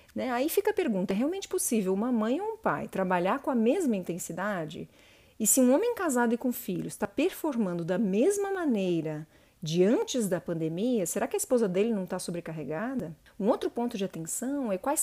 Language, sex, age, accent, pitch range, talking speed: Portuguese, female, 40-59, Brazilian, 185-255 Hz, 195 wpm